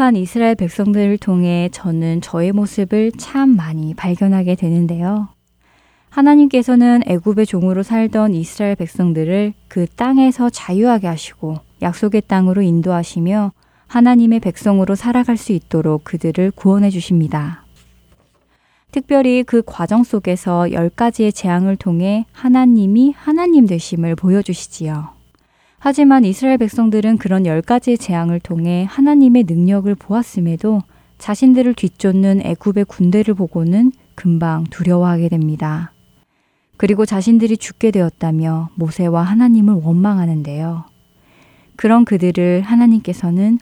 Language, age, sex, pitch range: Korean, 20-39, female, 170-225 Hz